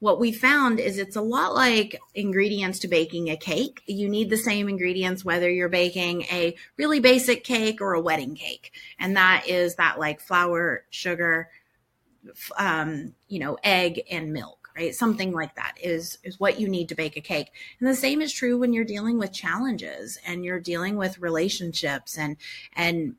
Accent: American